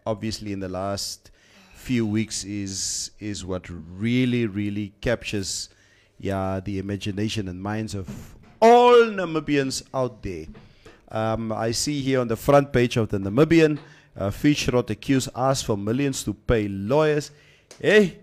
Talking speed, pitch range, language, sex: 145 wpm, 110-145 Hz, English, male